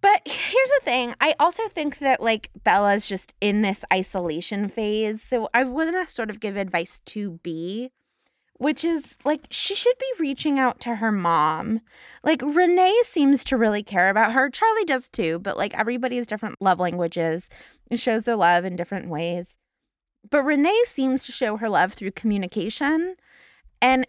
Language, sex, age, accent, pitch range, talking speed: English, female, 20-39, American, 205-295 Hz, 175 wpm